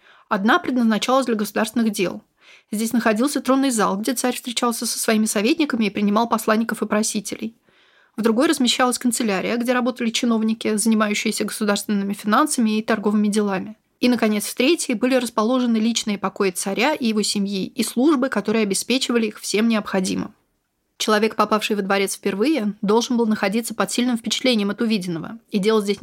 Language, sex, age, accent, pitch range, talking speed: Russian, female, 20-39, native, 200-235 Hz, 155 wpm